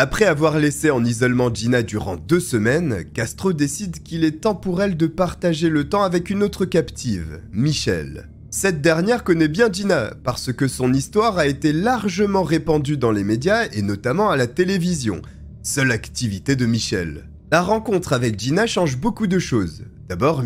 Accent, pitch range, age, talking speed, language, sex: French, 115-175 Hz, 30-49, 175 wpm, French, male